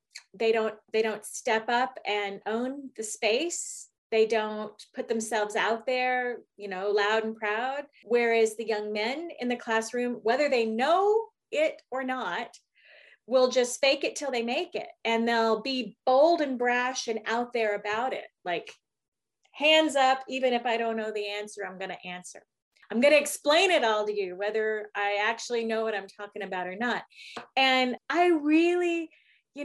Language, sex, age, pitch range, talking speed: English, female, 30-49, 215-275 Hz, 180 wpm